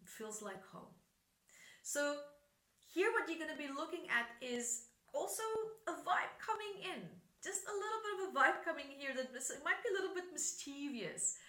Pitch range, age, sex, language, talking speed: 230-335 Hz, 30-49, female, English, 180 wpm